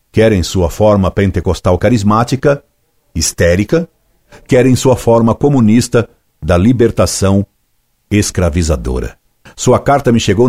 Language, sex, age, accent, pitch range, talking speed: Portuguese, male, 60-79, Brazilian, 90-115 Hz, 95 wpm